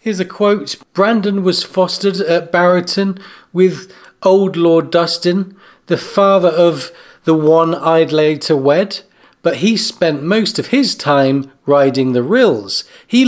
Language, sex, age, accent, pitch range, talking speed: English, male, 40-59, British, 165-205 Hz, 140 wpm